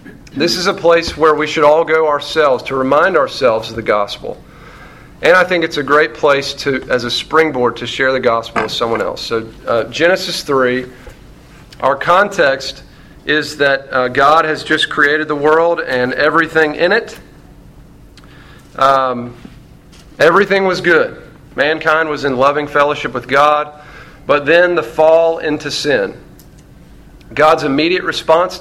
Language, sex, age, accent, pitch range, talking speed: English, male, 40-59, American, 135-165 Hz, 155 wpm